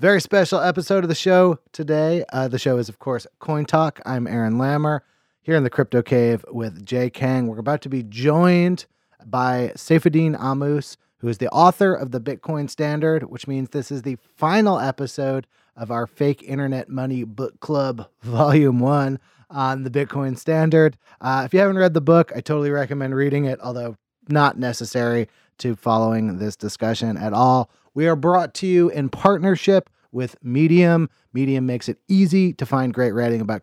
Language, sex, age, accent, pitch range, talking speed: English, male, 30-49, American, 115-150 Hz, 180 wpm